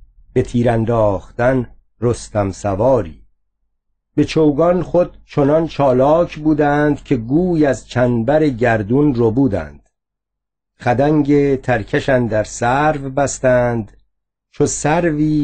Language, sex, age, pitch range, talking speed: Persian, male, 50-69, 115-150 Hz, 95 wpm